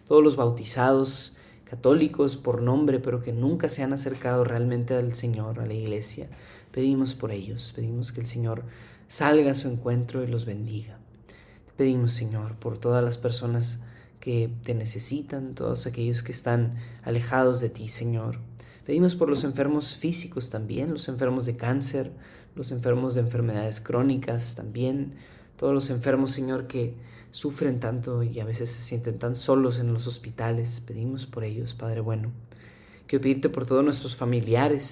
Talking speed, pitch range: 160 wpm, 115-130 Hz